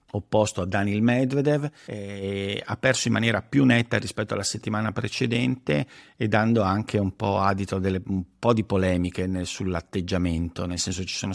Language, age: Italian, 50-69